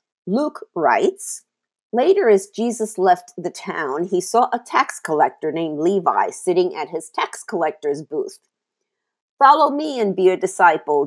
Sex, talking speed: female, 145 wpm